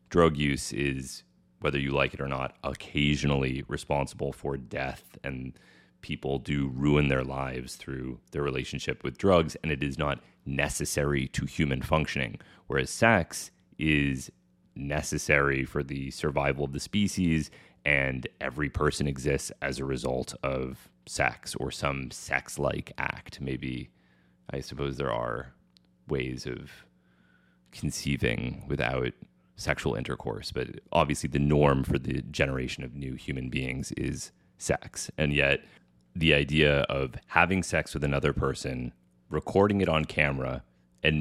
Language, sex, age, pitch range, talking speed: English, male, 30-49, 65-75 Hz, 135 wpm